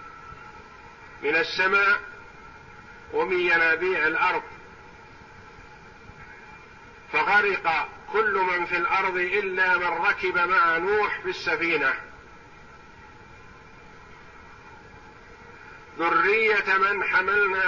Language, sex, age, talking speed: Arabic, male, 50-69, 65 wpm